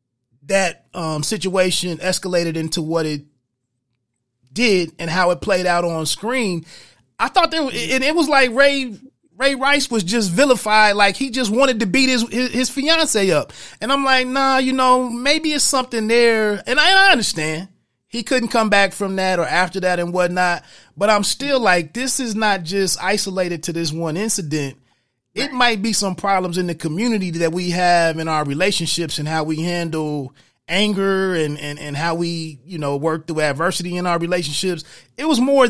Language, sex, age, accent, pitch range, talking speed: English, male, 30-49, American, 165-230 Hz, 190 wpm